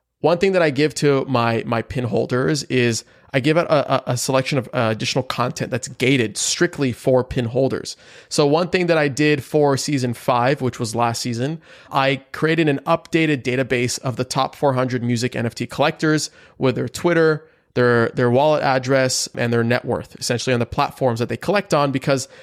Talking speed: 195 wpm